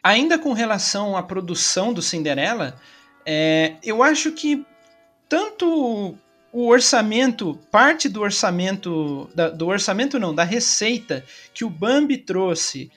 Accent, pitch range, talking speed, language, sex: Brazilian, 185-265 Hz, 125 wpm, Portuguese, male